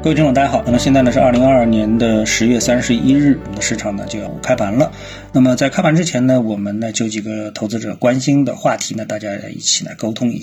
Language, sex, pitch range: Chinese, male, 105-140 Hz